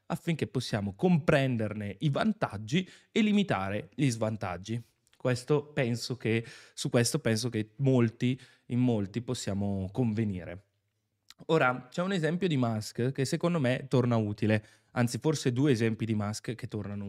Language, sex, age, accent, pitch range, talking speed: Italian, male, 20-39, native, 110-150 Hz, 140 wpm